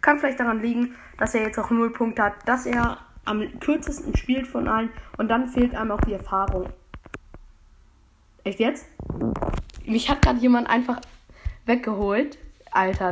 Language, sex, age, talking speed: German, female, 10-29, 155 wpm